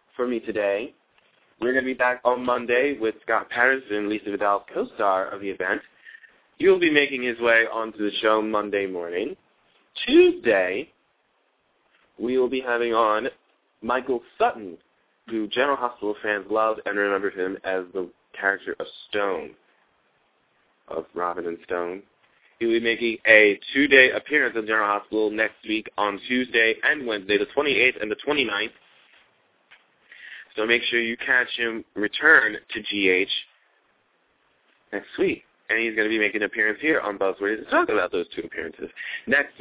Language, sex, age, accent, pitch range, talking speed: English, male, 20-39, American, 105-125 Hz, 160 wpm